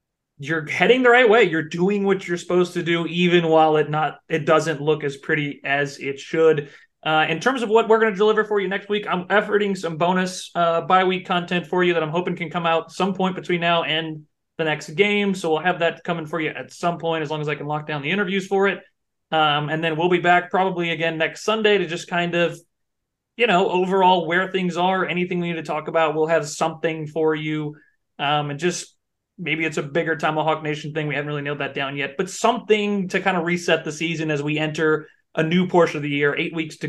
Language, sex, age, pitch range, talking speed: English, male, 30-49, 150-175 Hz, 240 wpm